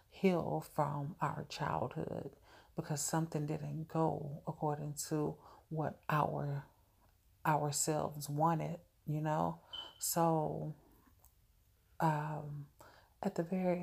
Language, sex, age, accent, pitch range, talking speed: English, female, 30-49, American, 110-165 Hz, 90 wpm